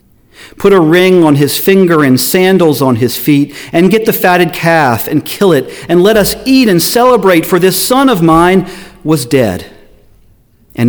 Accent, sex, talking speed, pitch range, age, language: American, male, 180 wpm, 115-175 Hz, 40-59, English